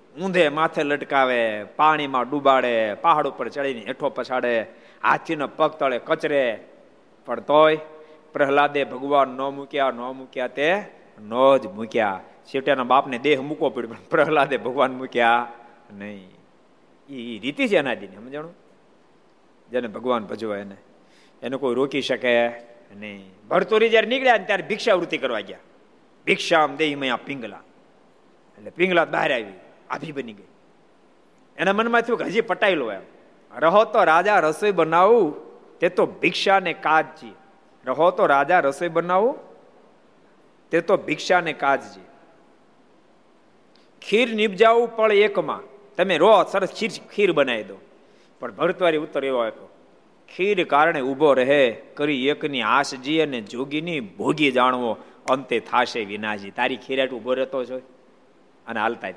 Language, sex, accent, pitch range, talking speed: Gujarati, male, native, 125-170 Hz, 90 wpm